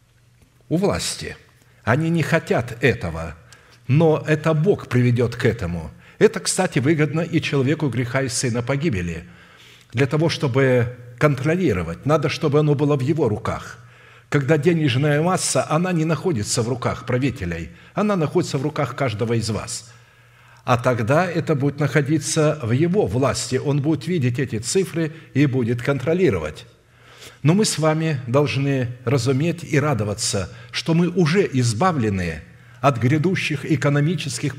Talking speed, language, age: 135 wpm, Russian, 60-79